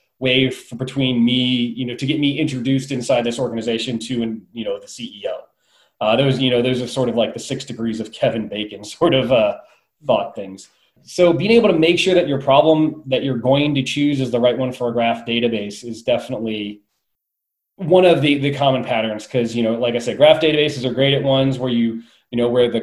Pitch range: 115-140 Hz